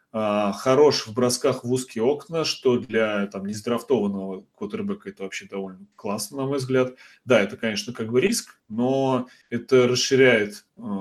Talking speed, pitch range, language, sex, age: 145 wpm, 105-135 Hz, Russian, male, 20-39